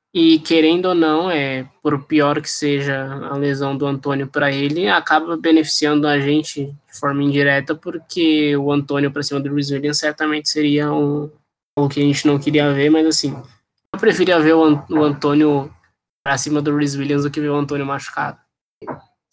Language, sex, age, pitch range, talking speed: Portuguese, male, 10-29, 145-160 Hz, 180 wpm